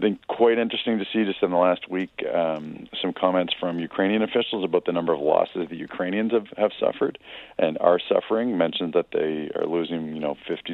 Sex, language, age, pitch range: male, English, 40-59, 80-95 Hz